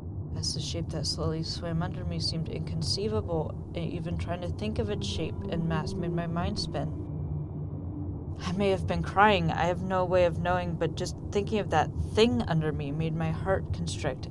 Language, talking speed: English, 195 wpm